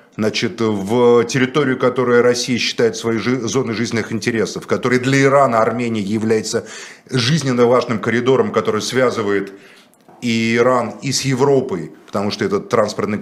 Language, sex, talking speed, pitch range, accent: Russian, male, 130 wpm, 115-150 Hz, native